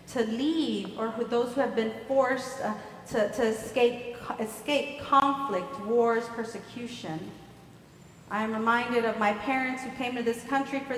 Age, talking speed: 40-59, 160 wpm